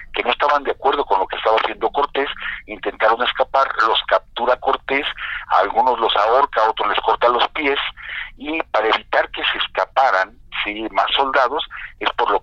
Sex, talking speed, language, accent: male, 185 wpm, Spanish, Mexican